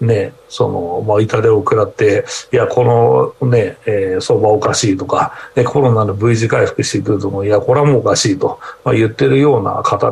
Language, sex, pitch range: Japanese, male, 115-185 Hz